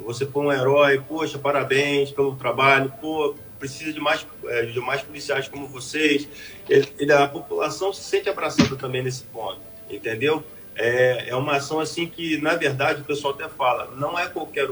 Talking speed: 180 wpm